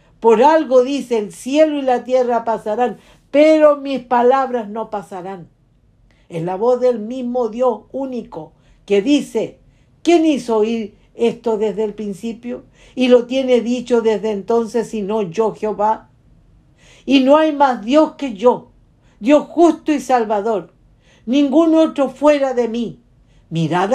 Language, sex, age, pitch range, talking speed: English, female, 60-79, 215-265 Hz, 140 wpm